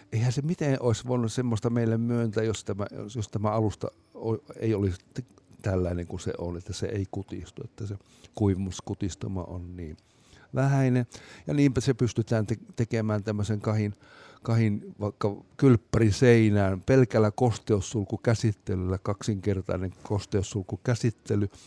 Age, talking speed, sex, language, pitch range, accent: 60-79, 120 wpm, male, Finnish, 95-115 Hz, native